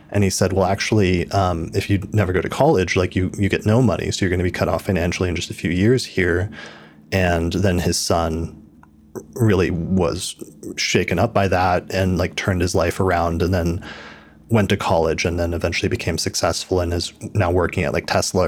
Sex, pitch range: male, 90-100 Hz